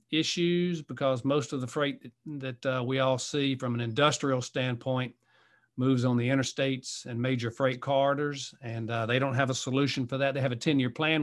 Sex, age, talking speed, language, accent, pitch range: male, 50-69, 205 wpm, English, American, 120-145 Hz